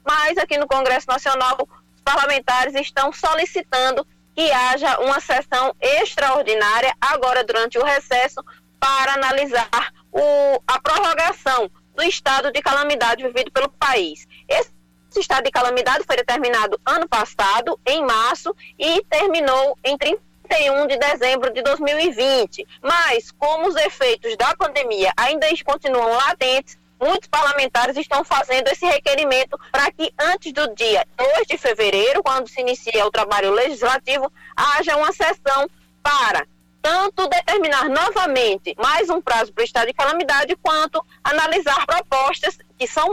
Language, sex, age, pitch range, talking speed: Portuguese, female, 20-39, 255-310 Hz, 135 wpm